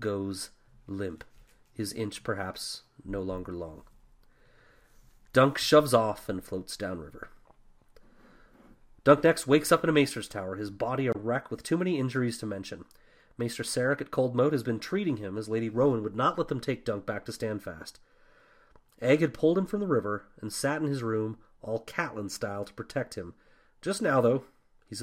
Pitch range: 110-175 Hz